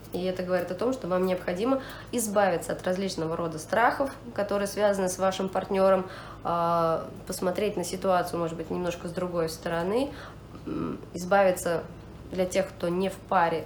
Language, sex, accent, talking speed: Russian, female, native, 150 wpm